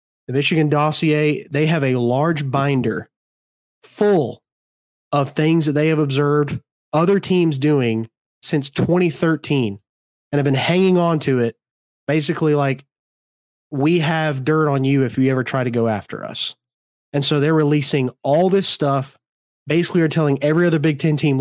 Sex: male